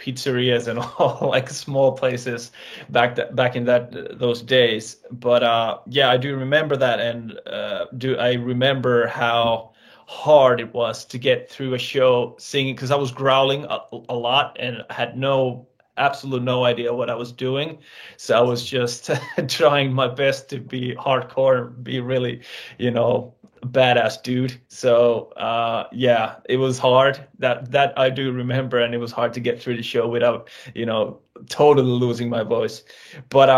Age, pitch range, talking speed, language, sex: 20-39, 120-135 Hz, 175 wpm, English, male